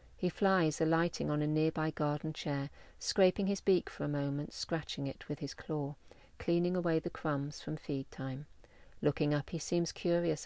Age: 40-59